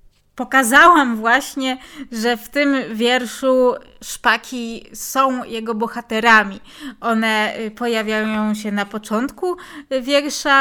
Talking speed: 90 wpm